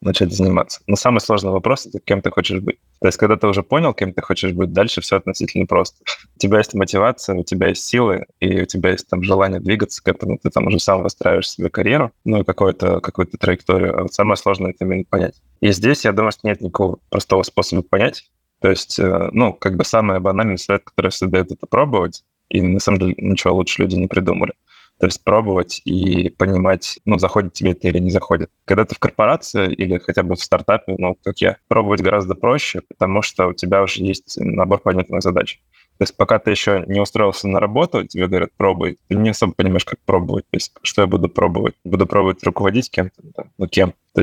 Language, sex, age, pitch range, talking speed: Russian, male, 20-39, 95-100 Hz, 220 wpm